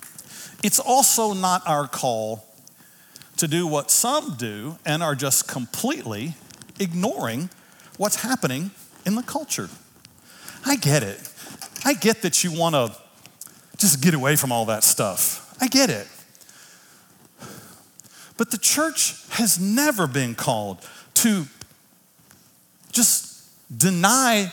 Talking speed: 120 wpm